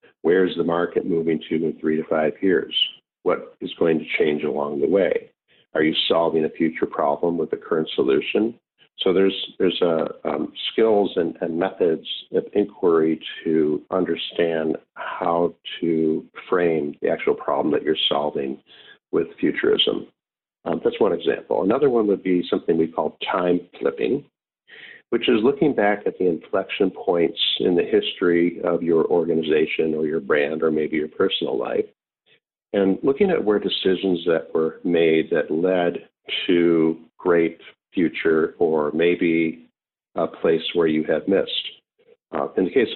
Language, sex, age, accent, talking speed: English, male, 50-69, American, 155 wpm